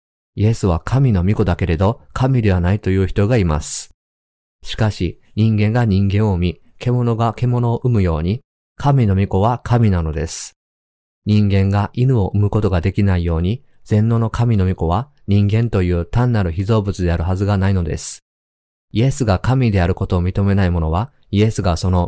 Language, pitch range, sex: Japanese, 85-110 Hz, male